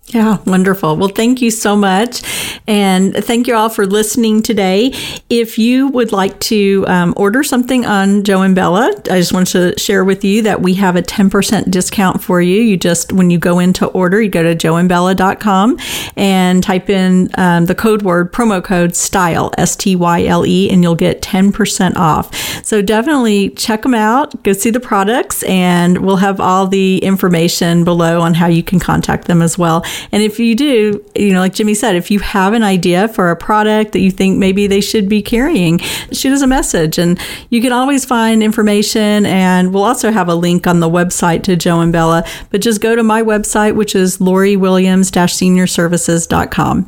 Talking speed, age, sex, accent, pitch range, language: 195 wpm, 40-59, female, American, 180-220 Hz, English